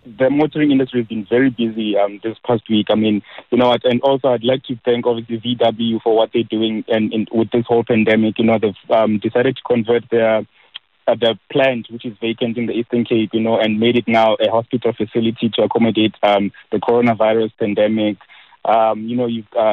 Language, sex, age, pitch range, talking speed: English, male, 20-39, 110-125 Hz, 215 wpm